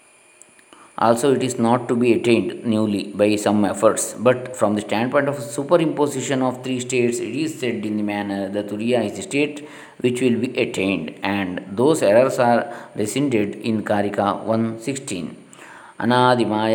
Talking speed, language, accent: 155 wpm, Kannada, native